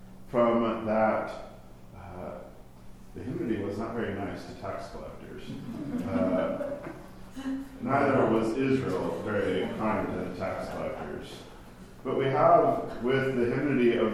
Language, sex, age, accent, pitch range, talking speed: English, male, 40-59, American, 100-120 Hz, 125 wpm